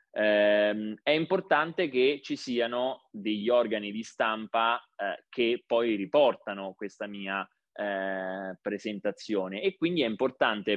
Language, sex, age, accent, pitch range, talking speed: Italian, male, 20-39, native, 105-135 Hz, 125 wpm